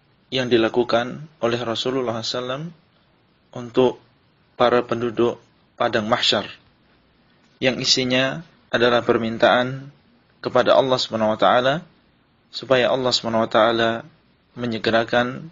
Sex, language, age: male, Indonesian, 20-39